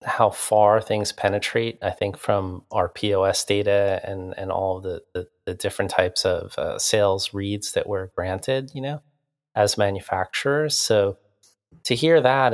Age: 30-49